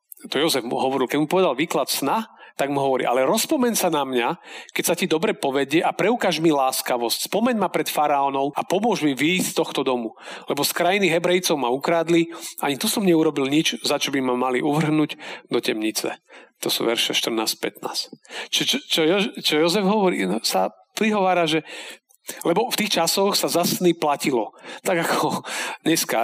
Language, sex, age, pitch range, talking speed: Slovak, male, 40-59, 130-185 Hz, 185 wpm